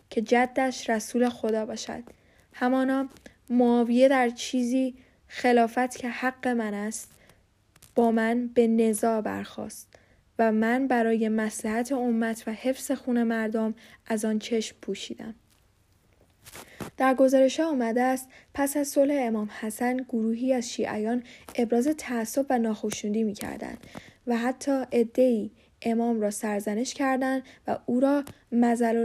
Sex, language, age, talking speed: female, Persian, 10-29, 125 wpm